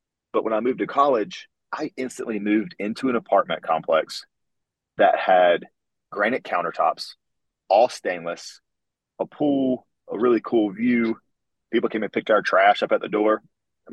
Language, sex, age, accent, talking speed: English, male, 30-49, American, 155 wpm